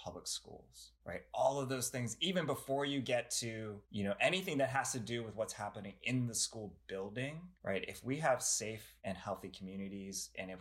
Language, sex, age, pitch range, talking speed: English, male, 20-39, 95-125 Hz, 205 wpm